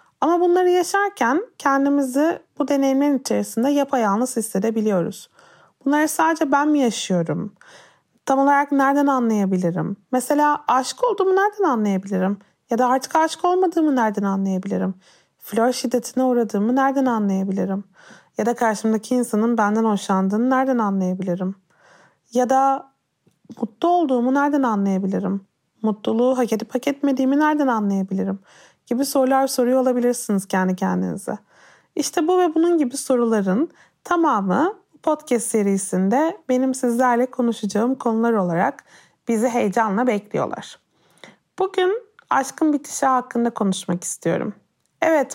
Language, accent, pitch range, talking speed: Turkish, native, 205-285 Hz, 115 wpm